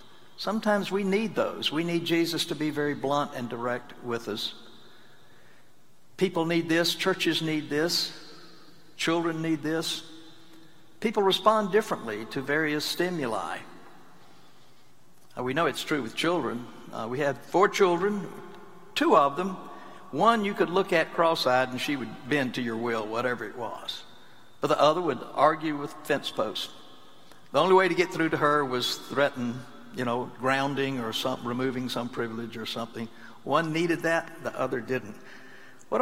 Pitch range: 130-180 Hz